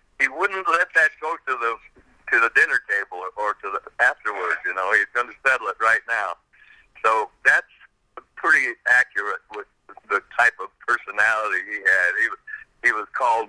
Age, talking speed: 60-79, 180 wpm